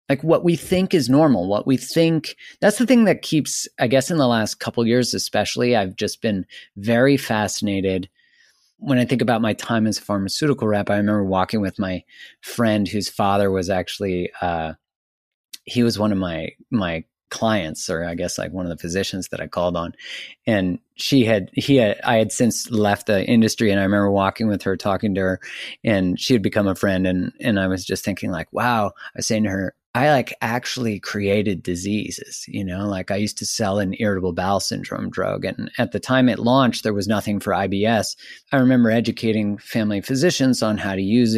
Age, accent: 30-49, American